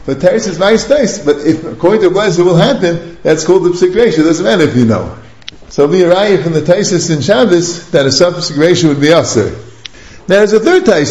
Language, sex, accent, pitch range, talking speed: English, male, American, 145-215 Hz, 225 wpm